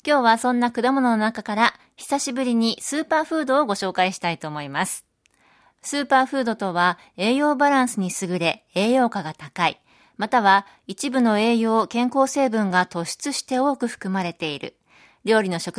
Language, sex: Japanese, female